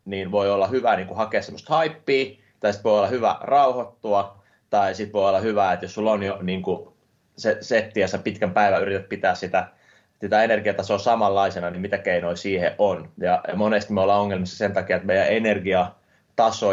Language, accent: Finnish, native